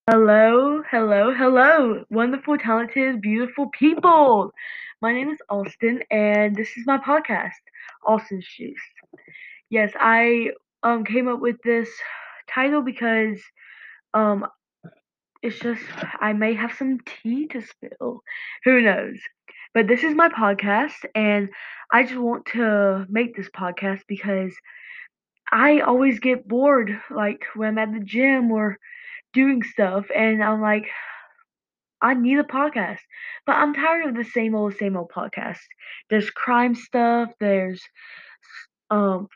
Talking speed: 135 wpm